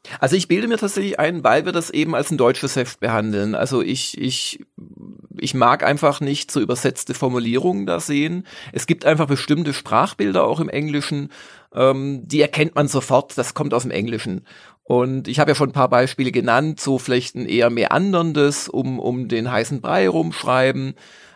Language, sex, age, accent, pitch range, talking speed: German, male, 40-59, German, 125-150 Hz, 185 wpm